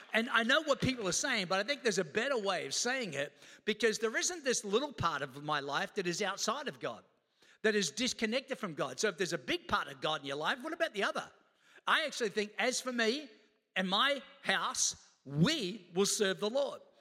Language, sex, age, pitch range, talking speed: English, male, 50-69, 190-245 Hz, 230 wpm